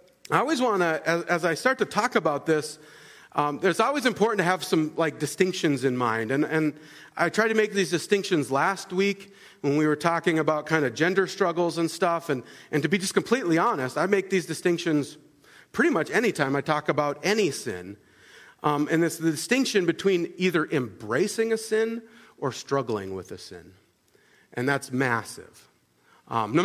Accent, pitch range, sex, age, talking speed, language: American, 150-200 Hz, male, 40-59, 185 wpm, English